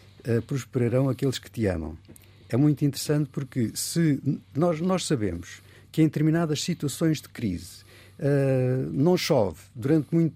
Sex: male